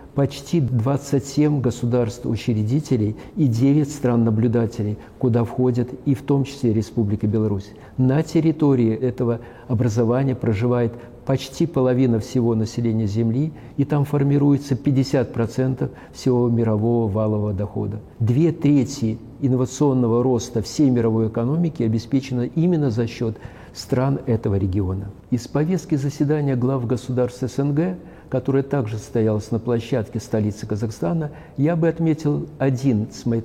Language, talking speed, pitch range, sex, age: Russian, 120 wpm, 115-140 Hz, male, 50-69